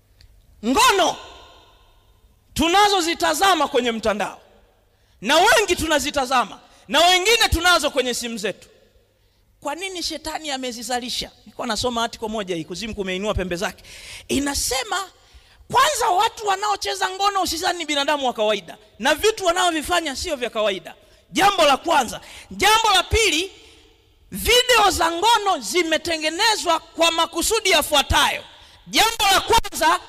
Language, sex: Swahili, male